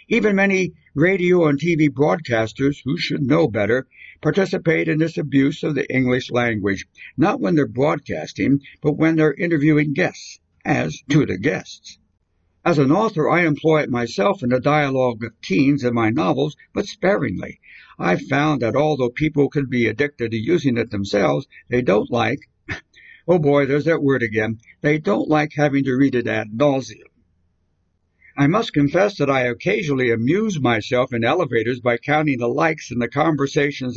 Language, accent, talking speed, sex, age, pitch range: English, American, 170 wpm, male, 60-79, 125-155 Hz